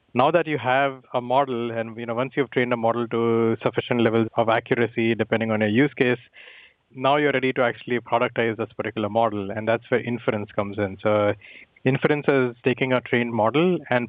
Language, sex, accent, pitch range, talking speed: English, male, Indian, 115-125 Hz, 200 wpm